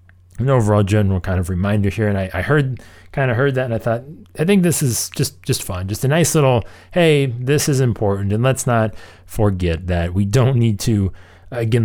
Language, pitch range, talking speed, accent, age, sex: English, 95-130 Hz, 220 wpm, American, 30-49, male